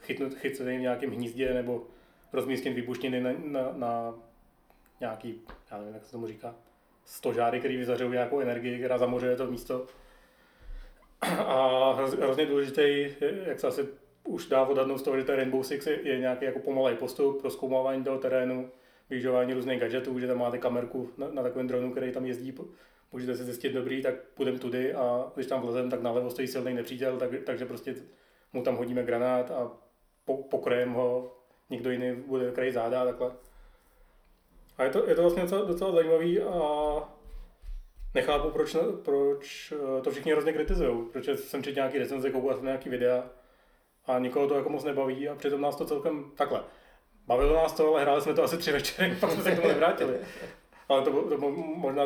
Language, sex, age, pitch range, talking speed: Czech, male, 30-49, 125-145 Hz, 180 wpm